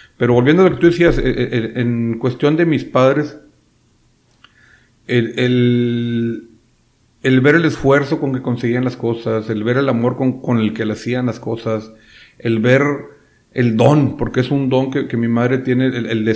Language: Spanish